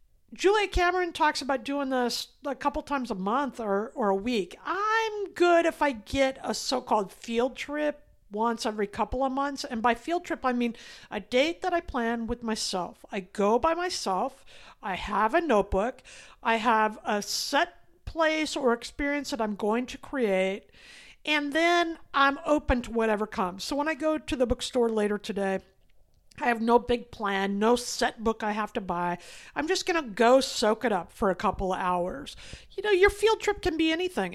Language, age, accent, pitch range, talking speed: English, 50-69, American, 220-295 Hz, 195 wpm